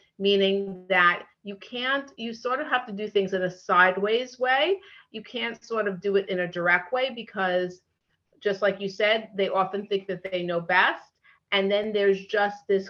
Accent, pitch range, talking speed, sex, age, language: American, 185-230 Hz, 195 wpm, female, 30-49, English